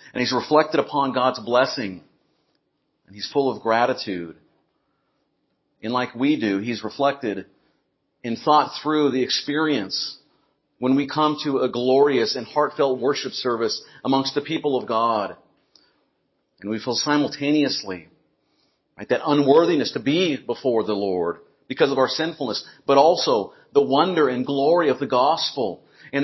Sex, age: male, 50-69